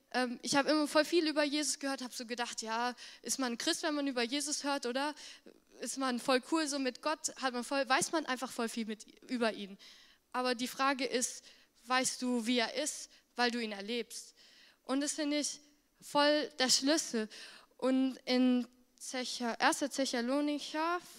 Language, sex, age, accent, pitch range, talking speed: German, female, 10-29, German, 245-290 Hz, 180 wpm